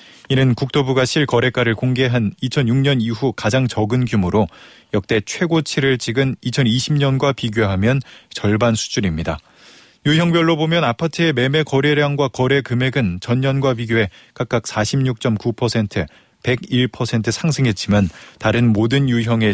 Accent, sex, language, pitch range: native, male, Korean, 110-140 Hz